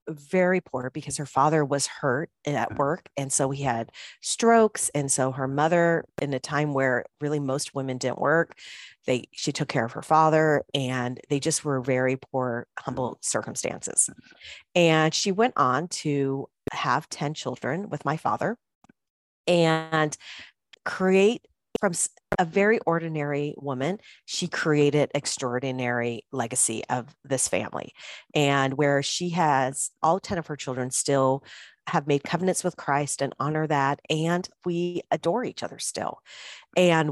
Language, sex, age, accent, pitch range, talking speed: English, female, 40-59, American, 135-170 Hz, 150 wpm